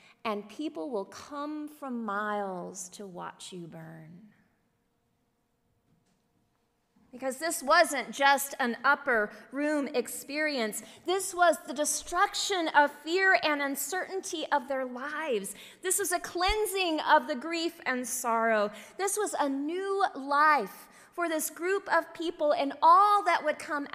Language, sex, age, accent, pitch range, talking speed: English, female, 30-49, American, 255-355 Hz, 135 wpm